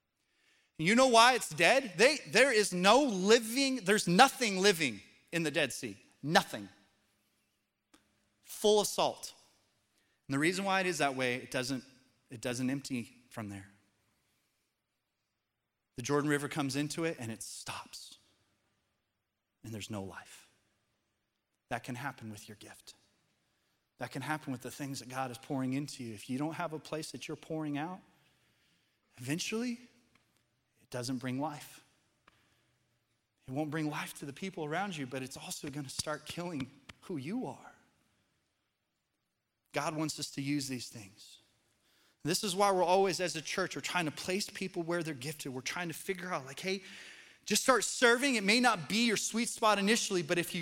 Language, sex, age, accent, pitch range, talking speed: English, male, 30-49, American, 125-200 Hz, 165 wpm